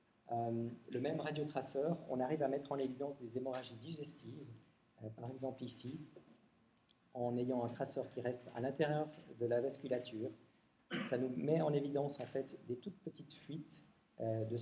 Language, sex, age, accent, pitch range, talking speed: French, male, 40-59, French, 120-150 Hz, 170 wpm